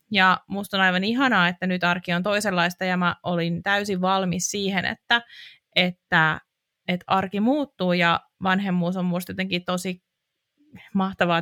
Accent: native